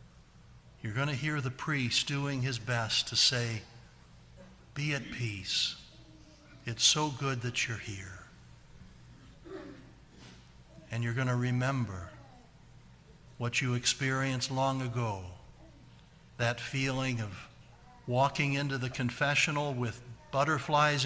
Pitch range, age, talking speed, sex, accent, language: 110-130 Hz, 60-79, 110 wpm, male, American, English